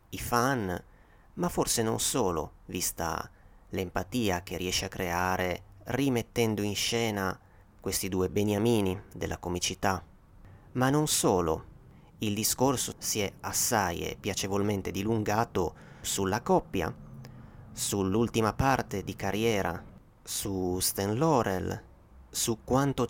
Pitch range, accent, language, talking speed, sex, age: 95-125 Hz, native, Italian, 105 wpm, male, 30-49